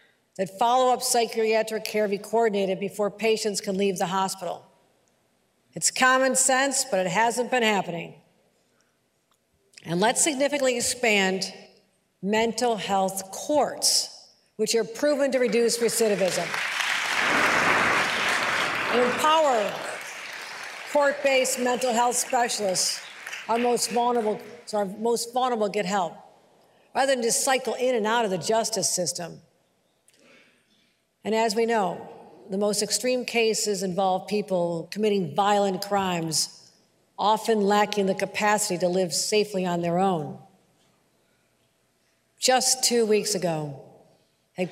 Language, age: English, 60-79